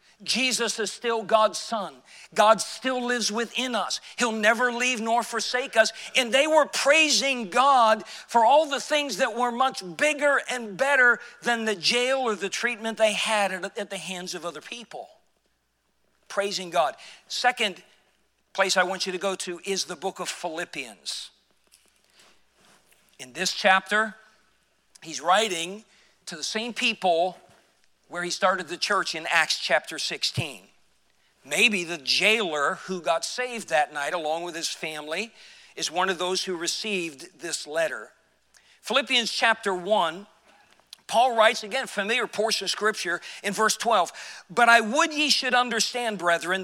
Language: English